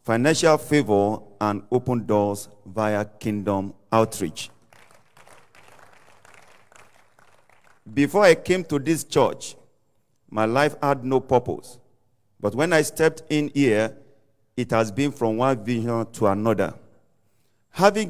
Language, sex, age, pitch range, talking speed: English, male, 50-69, 110-140 Hz, 115 wpm